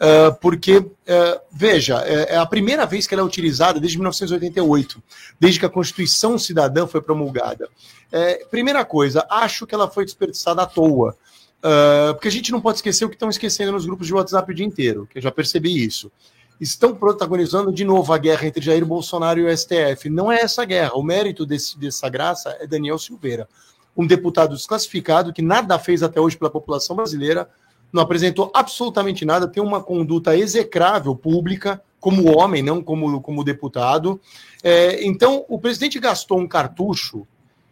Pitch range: 150-205 Hz